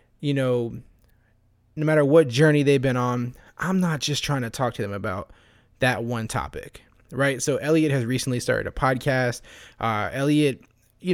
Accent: American